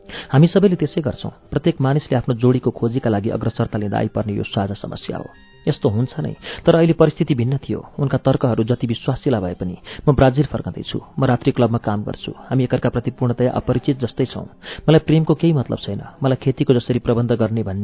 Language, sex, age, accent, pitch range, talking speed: English, male, 40-59, Indian, 115-145 Hz, 135 wpm